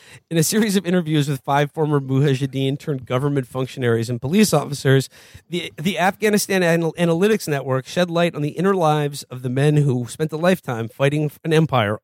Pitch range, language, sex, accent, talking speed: 130-180 Hz, English, male, American, 185 wpm